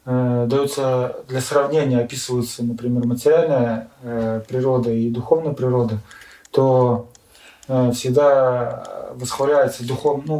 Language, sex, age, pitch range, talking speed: Russian, male, 20-39, 120-150 Hz, 85 wpm